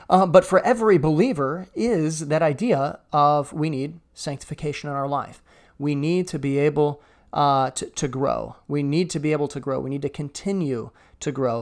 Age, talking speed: 30-49, 190 wpm